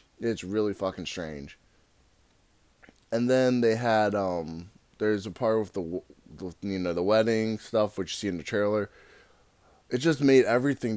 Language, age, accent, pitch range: English, 20-39, American, 95-120 Hz